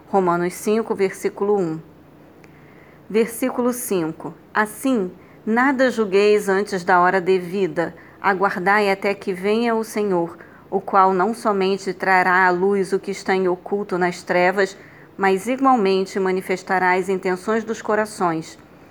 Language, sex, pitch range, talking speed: Portuguese, female, 180-215 Hz, 125 wpm